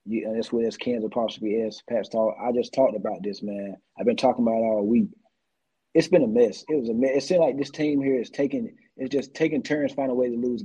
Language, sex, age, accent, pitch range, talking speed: English, male, 30-49, American, 130-180 Hz, 265 wpm